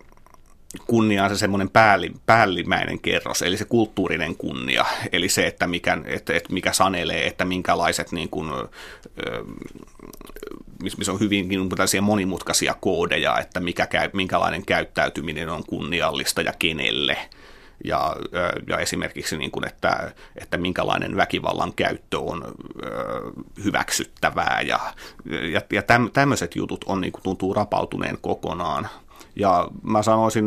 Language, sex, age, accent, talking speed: Finnish, male, 30-49, native, 120 wpm